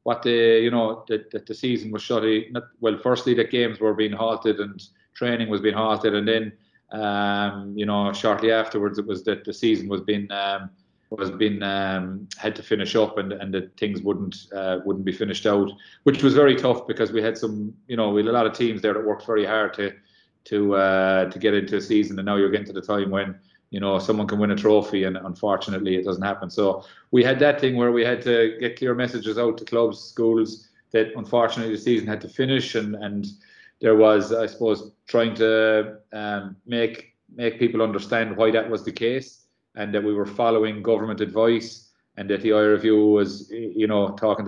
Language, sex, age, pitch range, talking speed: English, male, 30-49, 100-115 Hz, 215 wpm